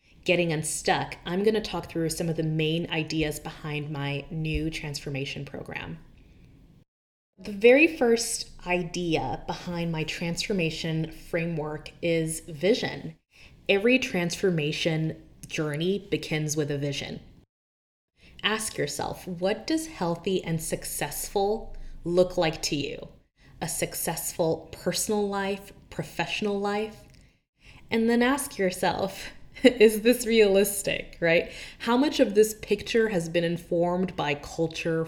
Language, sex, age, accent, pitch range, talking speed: English, female, 20-39, American, 155-195 Hz, 120 wpm